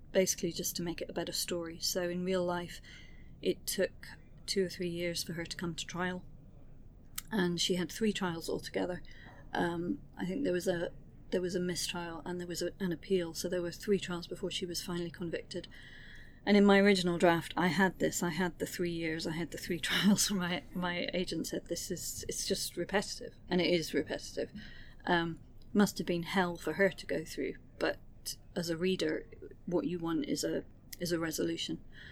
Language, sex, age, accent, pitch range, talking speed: English, female, 30-49, British, 165-185 Hz, 205 wpm